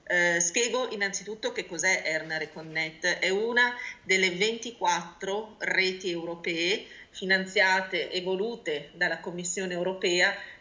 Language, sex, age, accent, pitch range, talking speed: Italian, female, 30-49, native, 170-205 Hz, 105 wpm